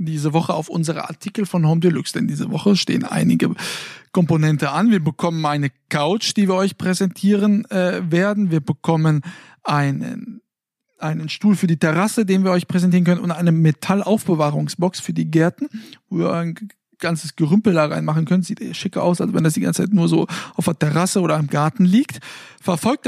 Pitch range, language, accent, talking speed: 165-205 Hz, German, German, 190 wpm